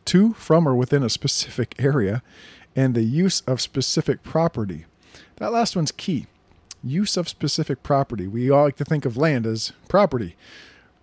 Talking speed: 165 wpm